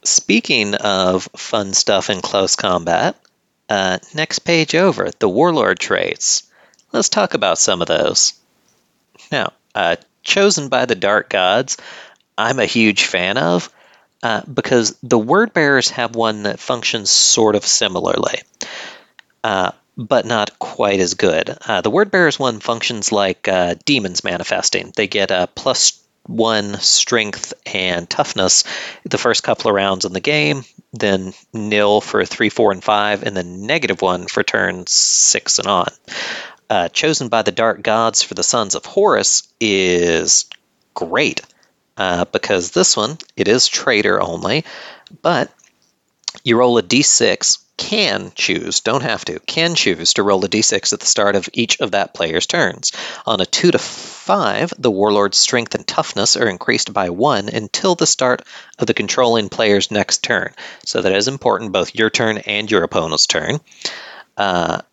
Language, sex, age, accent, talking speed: English, male, 40-59, American, 160 wpm